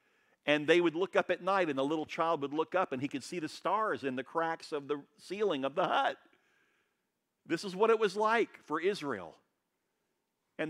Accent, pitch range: American, 125-180 Hz